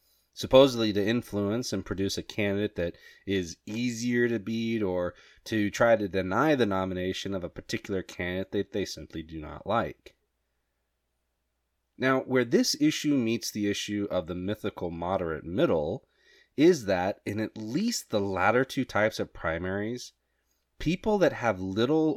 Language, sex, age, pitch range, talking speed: English, male, 30-49, 90-135 Hz, 150 wpm